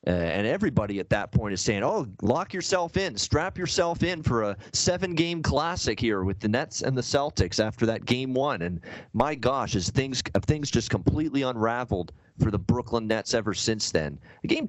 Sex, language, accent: male, English, American